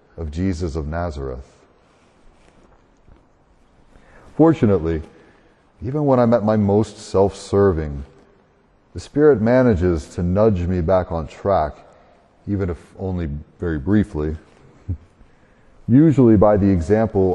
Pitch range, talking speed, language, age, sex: 85-105 Hz, 105 wpm, English, 40-59, male